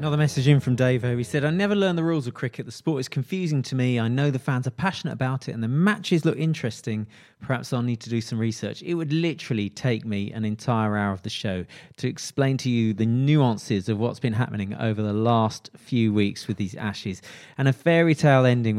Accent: British